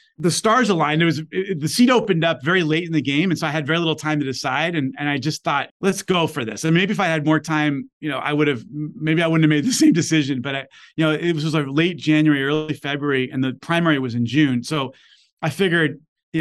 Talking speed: 280 wpm